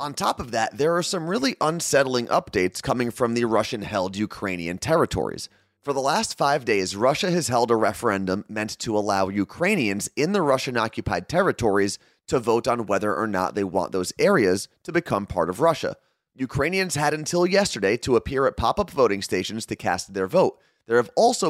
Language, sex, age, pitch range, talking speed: English, male, 30-49, 100-140 Hz, 185 wpm